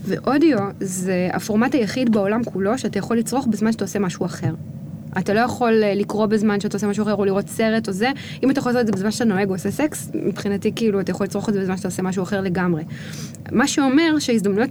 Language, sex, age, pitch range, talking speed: Hebrew, female, 20-39, 190-240 Hz, 225 wpm